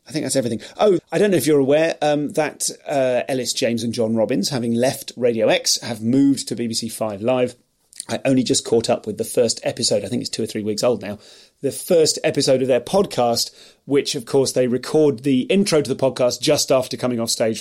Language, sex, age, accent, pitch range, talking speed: English, male, 30-49, British, 120-145 Hz, 230 wpm